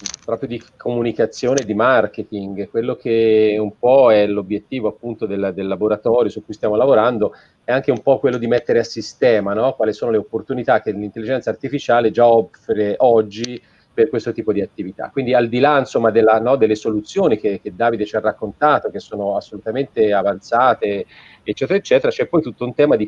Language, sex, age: Italian, male, 30-49